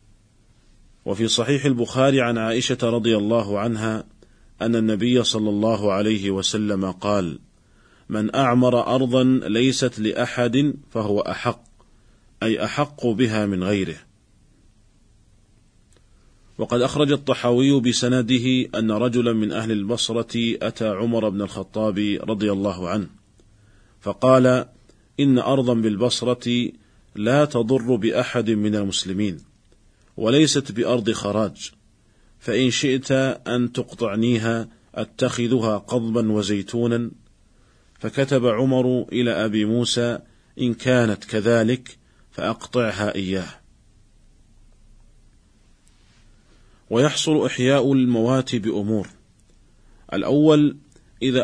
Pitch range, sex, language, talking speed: 105-125 Hz, male, Arabic, 90 wpm